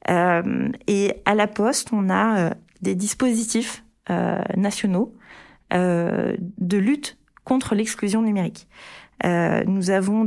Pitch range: 185-220 Hz